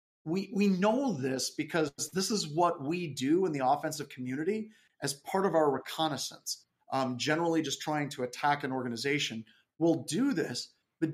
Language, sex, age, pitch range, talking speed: English, male, 30-49, 140-180 Hz, 165 wpm